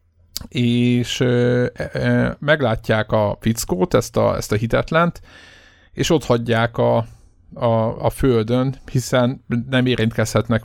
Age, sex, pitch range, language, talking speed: 50-69, male, 110-125 Hz, Hungarian, 105 wpm